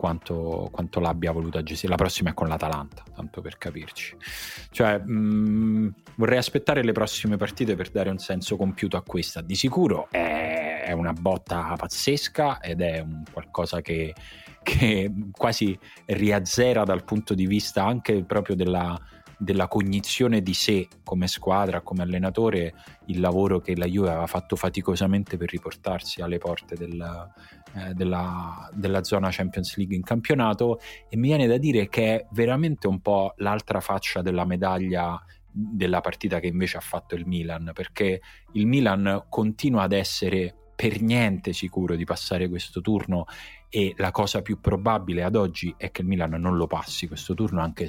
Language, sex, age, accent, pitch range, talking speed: Italian, male, 30-49, native, 85-105 Hz, 160 wpm